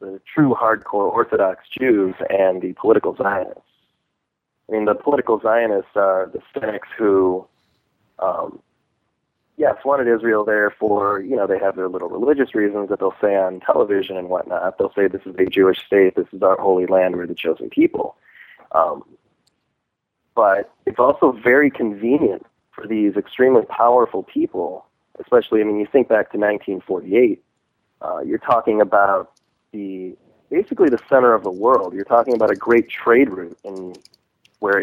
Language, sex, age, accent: English, male, 30-49, American